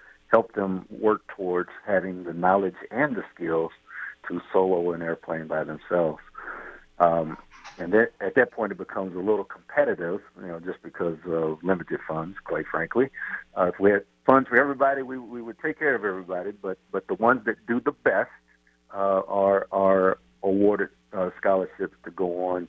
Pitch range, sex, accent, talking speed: 85-105 Hz, male, American, 175 wpm